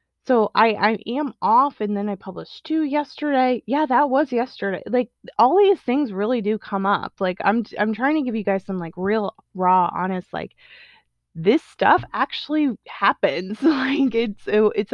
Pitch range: 185-245 Hz